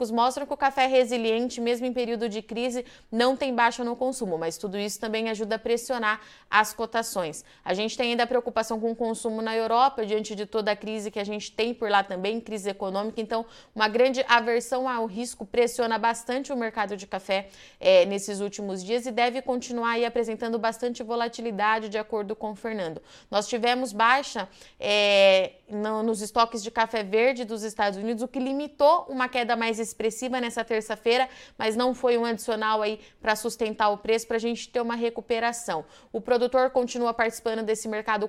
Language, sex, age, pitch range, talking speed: Portuguese, female, 20-39, 215-240 Hz, 190 wpm